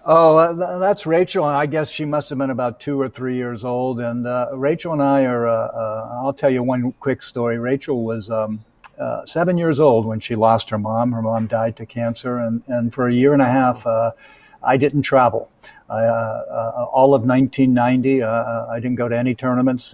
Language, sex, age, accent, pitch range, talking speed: English, male, 60-79, American, 120-135 Hz, 210 wpm